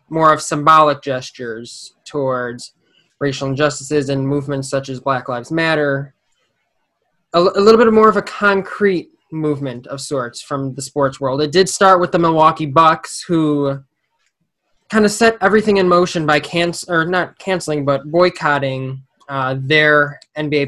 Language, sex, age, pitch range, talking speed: English, male, 20-39, 135-165 Hz, 155 wpm